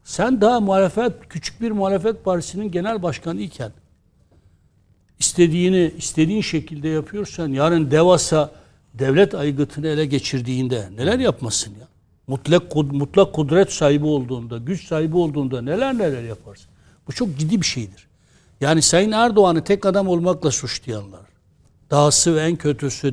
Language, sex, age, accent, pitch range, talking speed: Turkish, male, 60-79, native, 120-175 Hz, 125 wpm